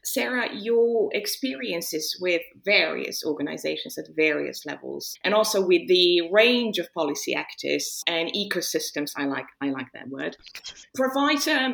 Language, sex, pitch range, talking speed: English, female, 165-235 Hz, 130 wpm